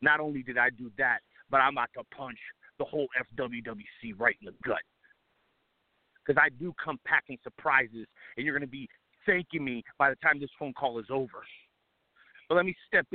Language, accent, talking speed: English, American, 195 wpm